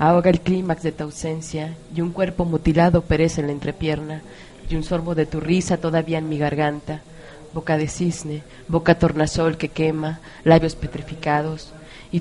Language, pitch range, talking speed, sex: Spanish, 155-170 Hz, 165 wpm, female